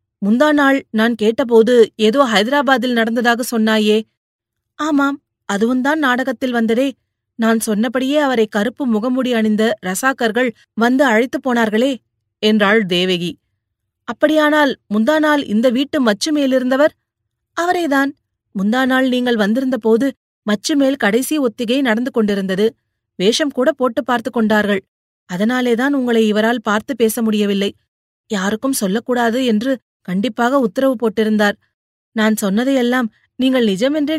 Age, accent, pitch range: 30-49, native, 205-265 Hz